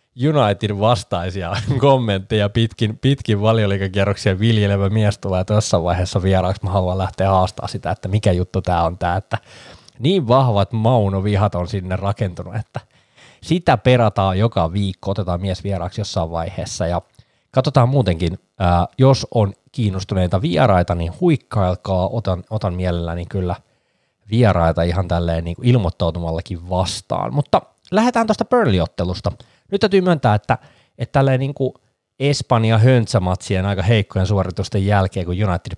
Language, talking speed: Finnish, 125 wpm